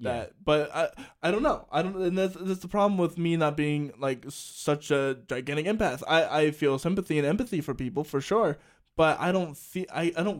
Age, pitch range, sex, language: 20-39, 130-155 Hz, male, English